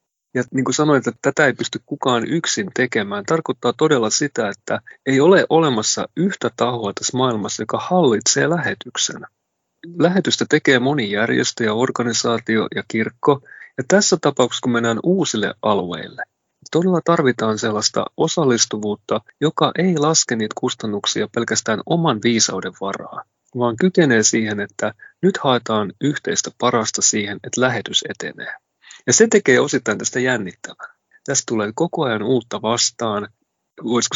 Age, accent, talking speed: 30-49, native, 135 wpm